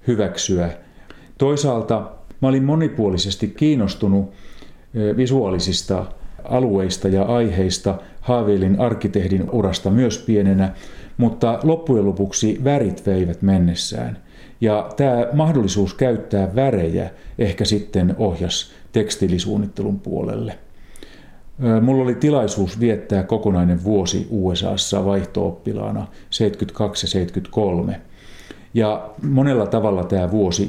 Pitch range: 95-110 Hz